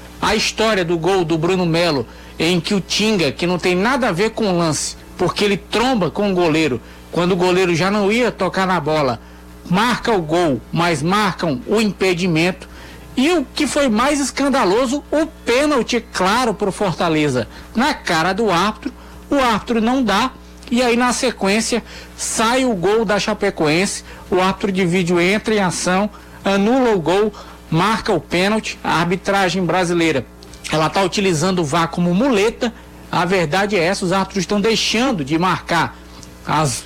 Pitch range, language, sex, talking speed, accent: 170-225 Hz, Portuguese, male, 170 wpm, Brazilian